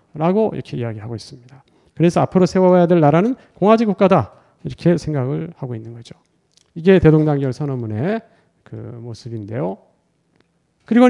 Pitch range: 140-200 Hz